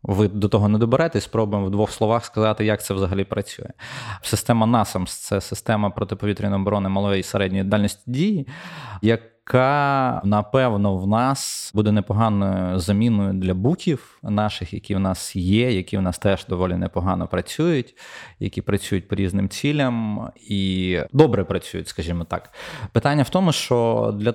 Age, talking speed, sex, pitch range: 20-39, 155 wpm, male, 100-120 Hz